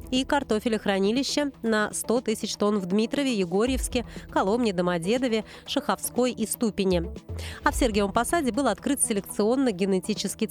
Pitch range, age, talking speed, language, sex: 195-255 Hz, 30-49, 120 wpm, Russian, female